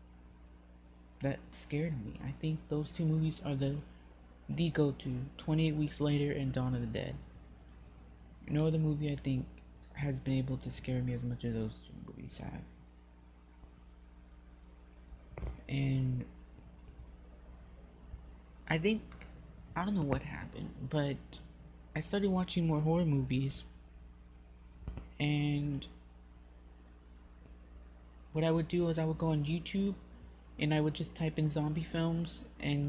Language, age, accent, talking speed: English, 30-49, American, 135 wpm